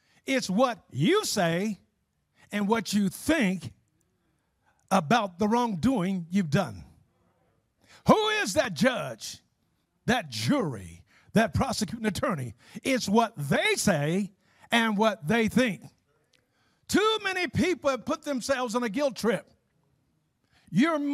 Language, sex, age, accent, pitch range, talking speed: English, male, 50-69, American, 185-285 Hz, 115 wpm